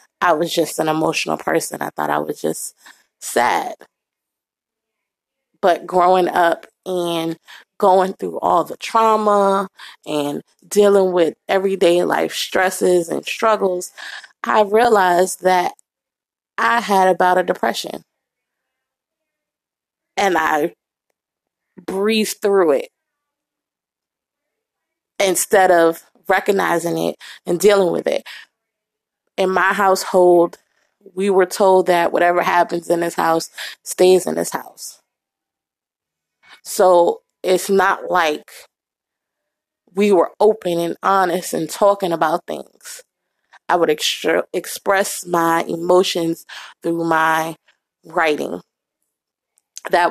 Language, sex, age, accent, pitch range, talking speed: English, female, 20-39, American, 170-200 Hz, 105 wpm